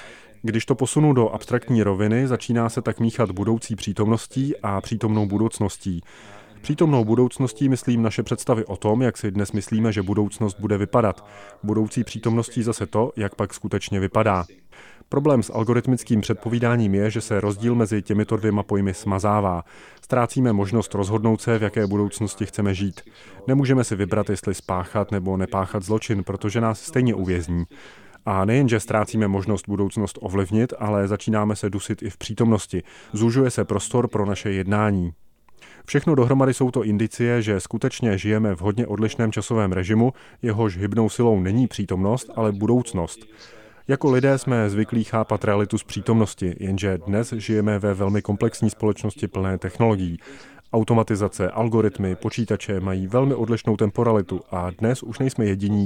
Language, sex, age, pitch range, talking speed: Czech, male, 30-49, 100-115 Hz, 150 wpm